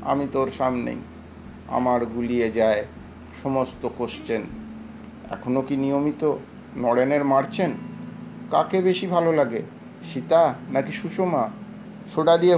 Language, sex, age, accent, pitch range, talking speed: Bengali, male, 50-69, native, 145-185 Hz, 110 wpm